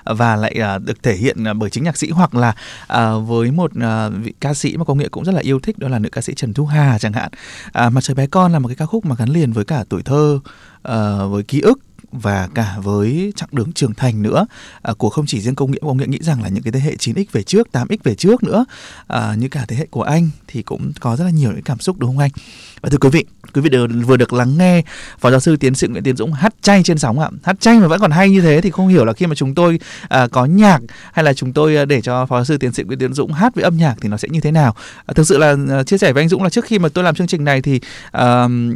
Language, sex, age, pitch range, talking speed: Vietnamese, male, 20-39, 125-175 Hz, 310 wpm